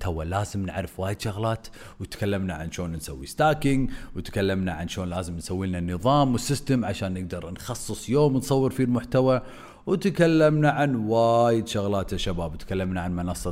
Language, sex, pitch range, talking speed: Arabic, male, 95-125 Hz, 150 wpm